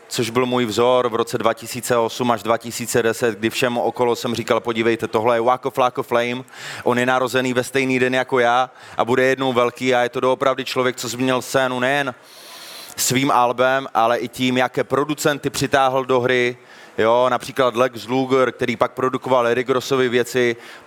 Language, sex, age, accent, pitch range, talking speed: Czech, male, 30-49, native, 125-140 Hz, 180 wpm